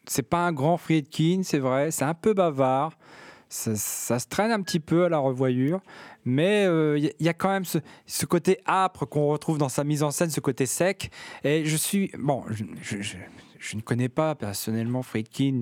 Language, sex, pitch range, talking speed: French, male, 130-165 Hz, 210 wpm